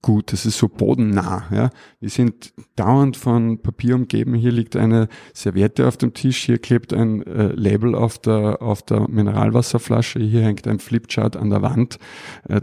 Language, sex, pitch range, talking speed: German, male, 100-120 Hz, 175 wpm